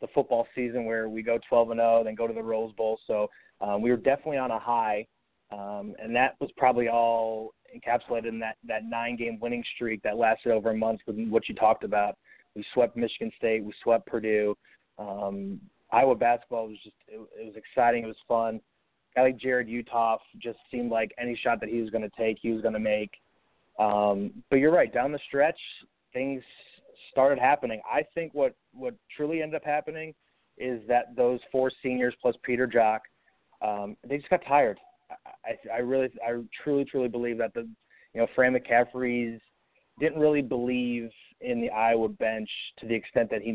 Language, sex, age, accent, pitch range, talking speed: English, male, 20-39, American, 110-125 Hz, 195 wpm